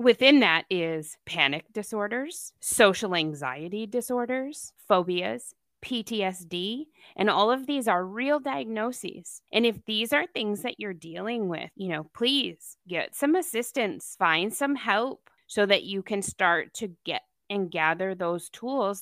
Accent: American